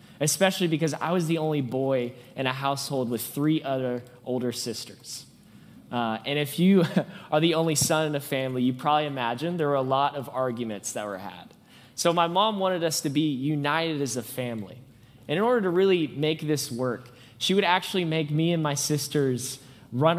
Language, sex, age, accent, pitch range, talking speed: English, male, 20-39, American, 125-165 Hz, 195 wpm